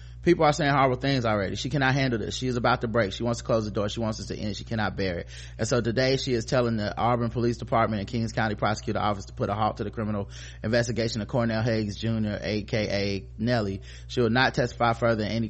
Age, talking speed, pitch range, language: 30-49, 255 wpm, 100-115 Hz, English